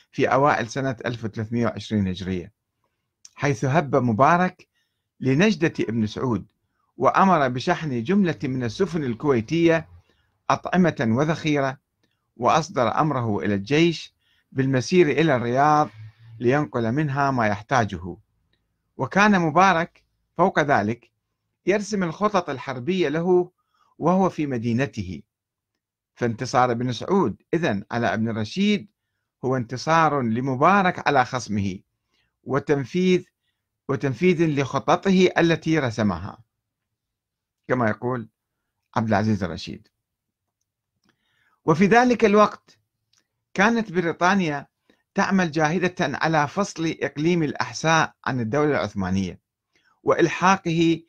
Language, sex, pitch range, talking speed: Arabic, male, 110-160 Hz, 90 wpm